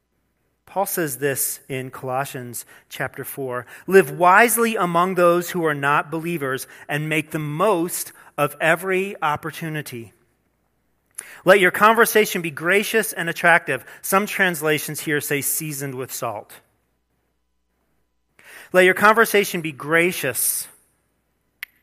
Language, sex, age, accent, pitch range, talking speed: English, male, 40-59, American, 120-160 Hz, 115 wpm